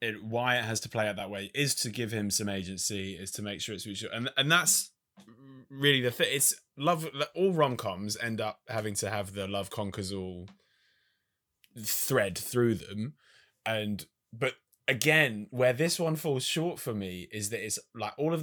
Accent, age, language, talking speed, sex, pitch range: British, 20-39, English, 195 wpm, male, 105-145 Hz